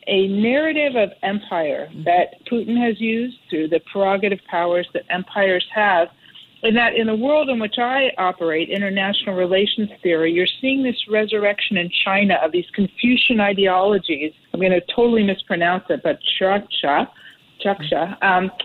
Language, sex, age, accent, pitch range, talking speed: English, female, 50-69, American, 180-235 Hz, 150 wpm